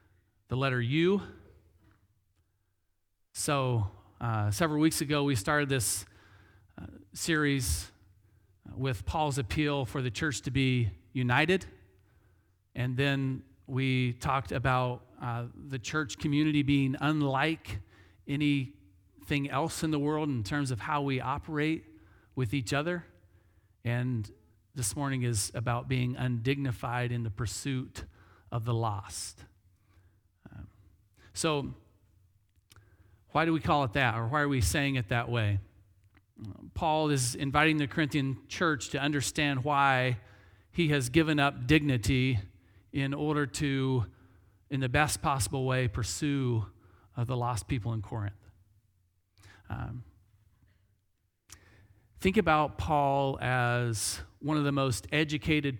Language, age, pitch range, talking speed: English, 40-59, 100-140 Hz, 125 wpm